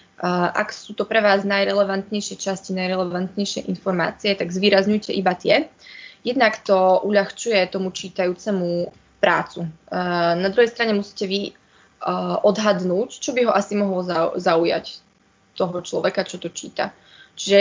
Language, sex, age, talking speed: Slovak, female, 20-39, 125 wpm